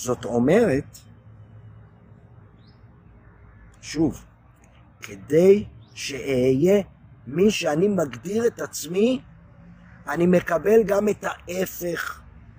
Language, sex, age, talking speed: Hebrew, male, 50-69, 70 wpm